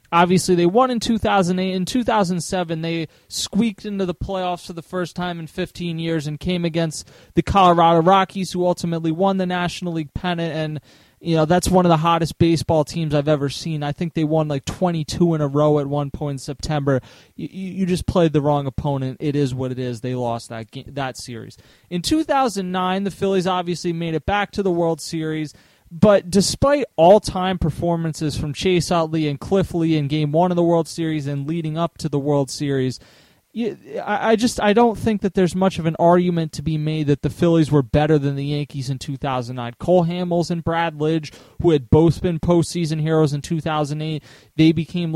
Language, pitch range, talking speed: English, 150-185 Hz, 215 wpm